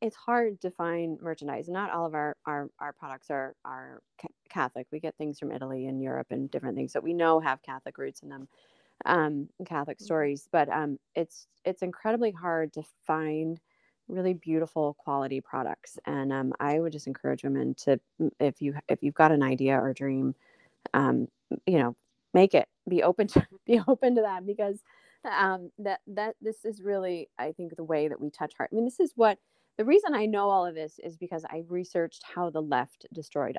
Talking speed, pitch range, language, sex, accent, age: 205 wpm, 145-190 Hz, English, female, American, 30-49